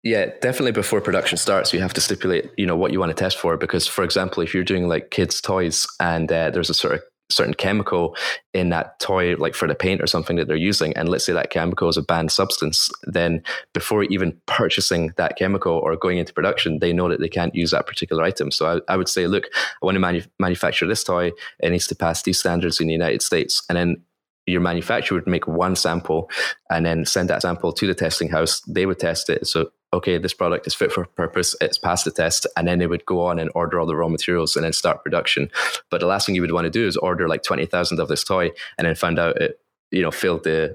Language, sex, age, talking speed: English, male, 20-39, 250 wpm